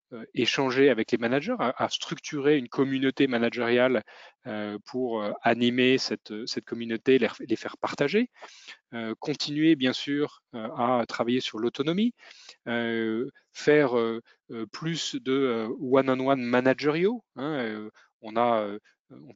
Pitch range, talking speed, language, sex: 115-145 Hz, 120 wpm, French, male